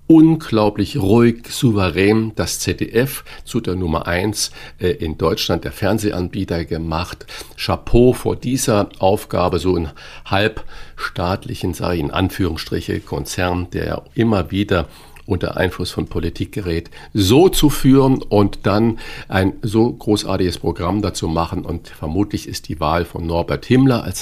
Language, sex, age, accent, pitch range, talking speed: German, male, 50-69, German, 90-115 Hz, 135 wpm